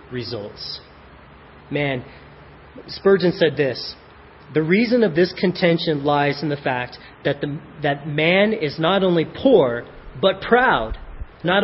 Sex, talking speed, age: male, 130 wpm, 30-49